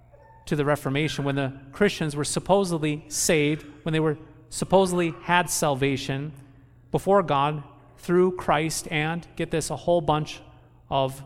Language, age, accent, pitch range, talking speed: English, 40-59, American, 130-180 Hz, 140 wpm